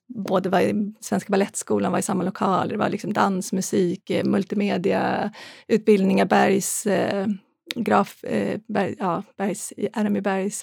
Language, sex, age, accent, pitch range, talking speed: Swedish, female, 30-49, native, 190-225 Hz, 135 wpm